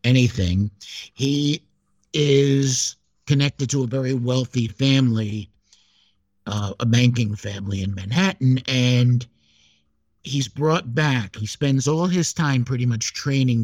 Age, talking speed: 50-69, 120 wpm